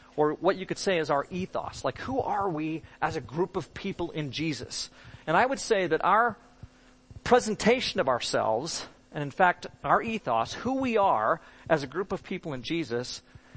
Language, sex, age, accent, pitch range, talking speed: English, male, 40-59, American, 140-200 Hz, 190 wpm